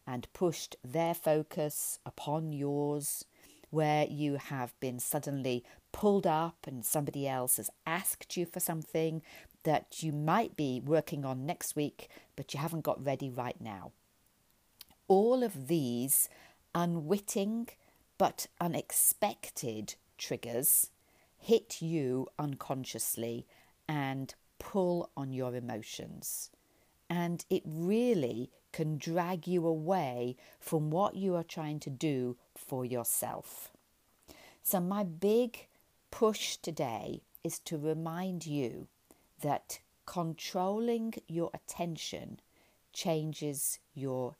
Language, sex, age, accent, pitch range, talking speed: English, female, 40-59, British, 135-175 Hz, 110 wpm